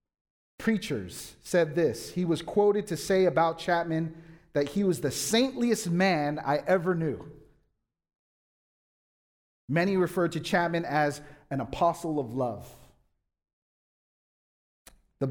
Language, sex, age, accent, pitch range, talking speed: English, male, 40-59, American, 145-180 Hz, 115 wpm